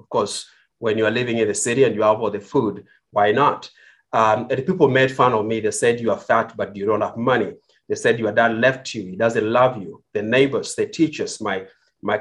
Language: English